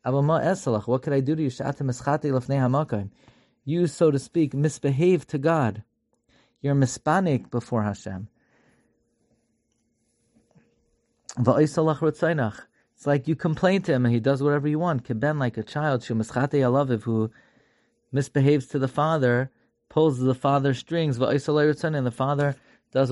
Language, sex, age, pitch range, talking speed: English, male, 30-49, 115-140 Hz, 120 wpm